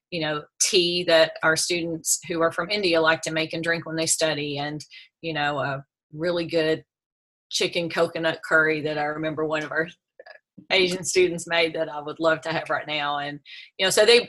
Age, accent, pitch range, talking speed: 30-49, American, 160-185 Hz, 205 wpm